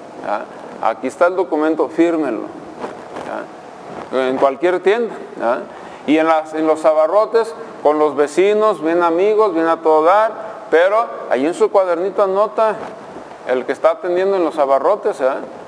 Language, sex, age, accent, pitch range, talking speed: Spanish, male, 50-69, Mexican, 160-215 Hz, 135 wpm